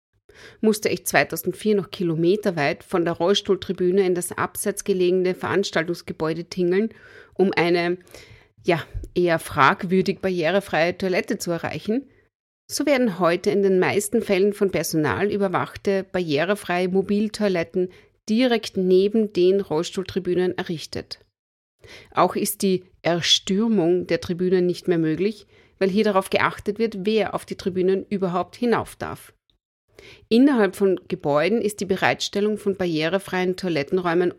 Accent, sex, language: German, female, German